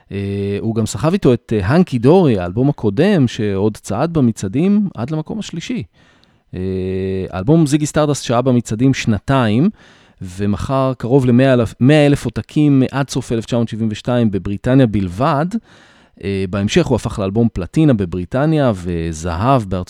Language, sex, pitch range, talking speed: English, male, 95-135 Hz, 105 wpm